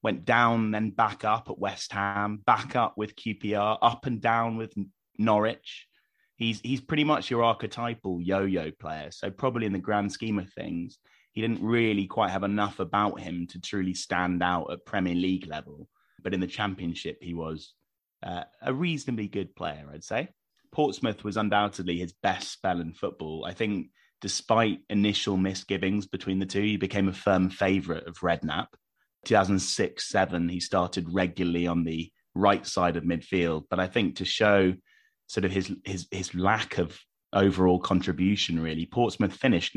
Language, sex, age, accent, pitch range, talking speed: English, male, 20-39, British, 85-105 Hz, 170 wpm